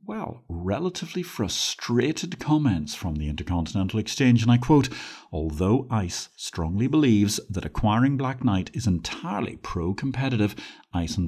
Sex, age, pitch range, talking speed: male, 50-69, 90-130 Hz, 130 wpm